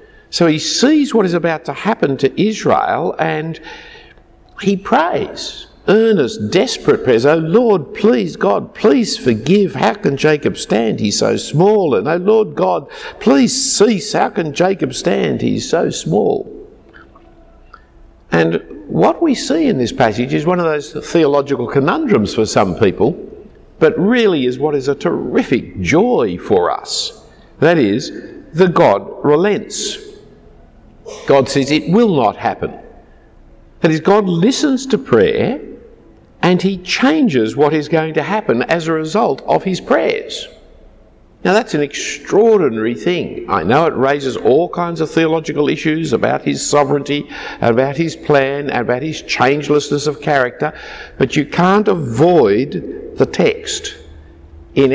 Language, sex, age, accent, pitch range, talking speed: English, male, 60-79, Australian, 145-220 Hz, 145 wpm